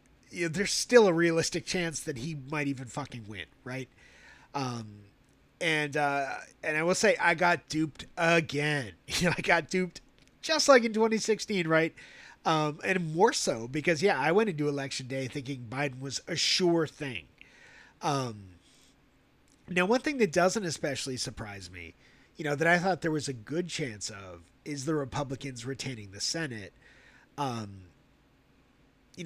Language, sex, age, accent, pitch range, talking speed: English, male, 30-49, American, 130-170 Hz, 160 wpm